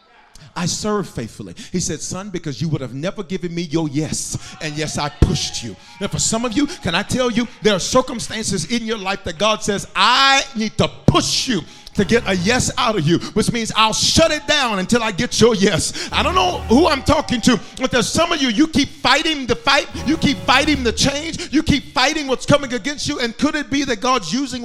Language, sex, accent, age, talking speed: English, male, American, 40-59, 235 wpm